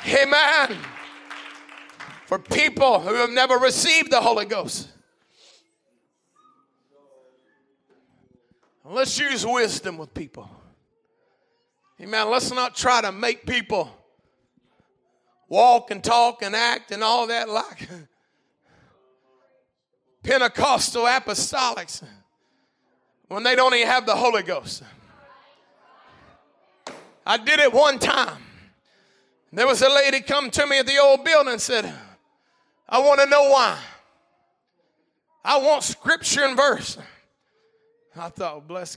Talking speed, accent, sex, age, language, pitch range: 110 wpm, American, male, 40-59, English, 220-300 Hz